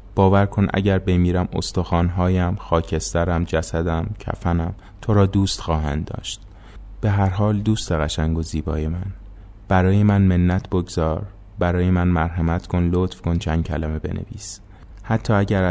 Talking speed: 140 wpm